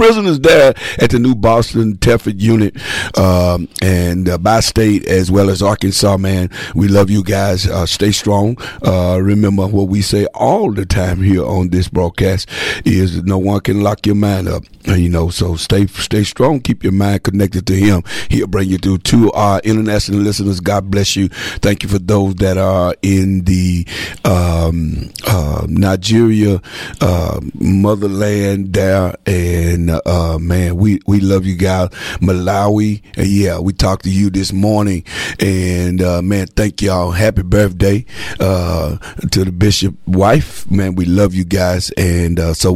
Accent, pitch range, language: American, 90-105 Hz, English